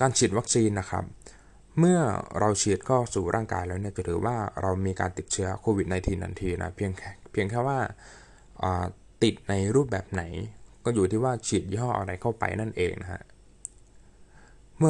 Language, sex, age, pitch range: Thai, male, 20-39, 95-115 Hz